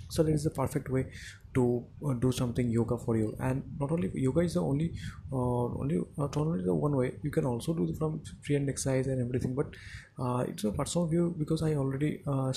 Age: 20-39